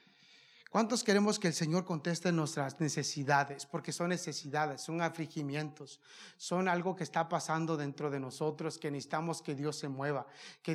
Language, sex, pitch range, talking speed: English, male, 155-195 Hz, 155 wpm